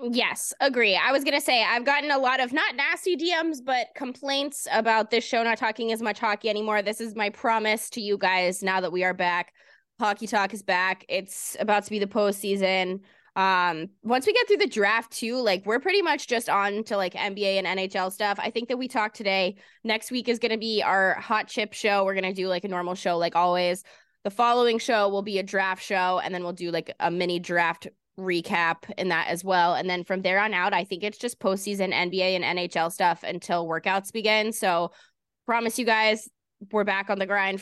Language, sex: English, female